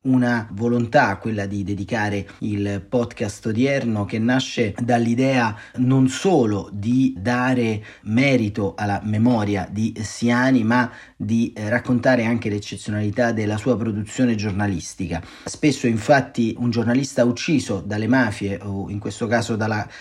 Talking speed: 125 wpm